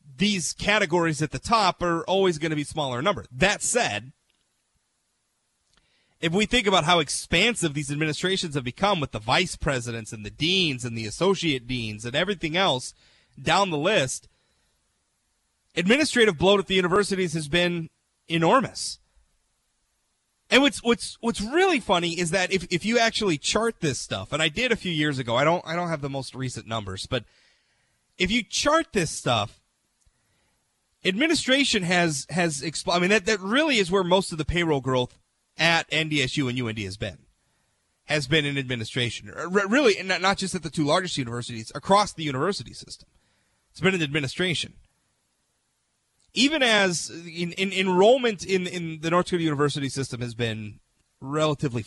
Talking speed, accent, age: 165 wpm, American, 30-49